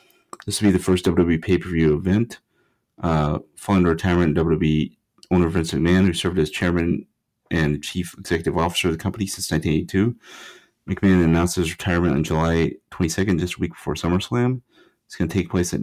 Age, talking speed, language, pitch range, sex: 30-49, 180 wpm, English, 80-90 Hz, male